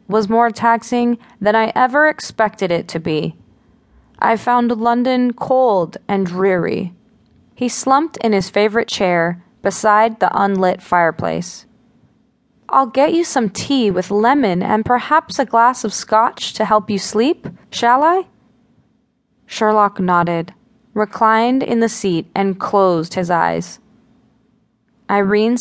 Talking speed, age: 130 wpm, 20-39